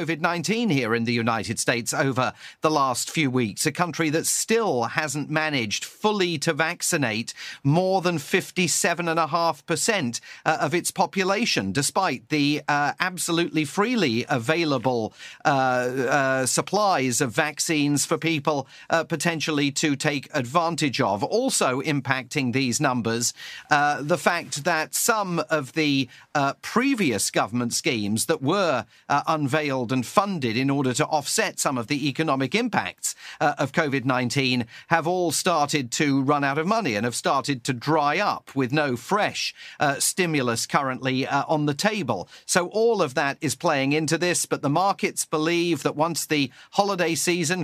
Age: 40-59